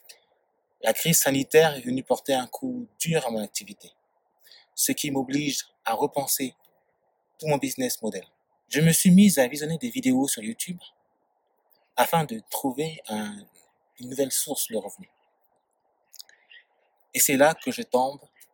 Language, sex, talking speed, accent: French, male, 150 wpm, French